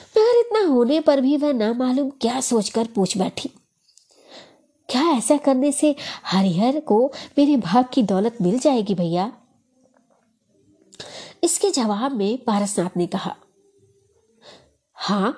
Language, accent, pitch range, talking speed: Hindi, native, 200-290 Hz, 120 wpm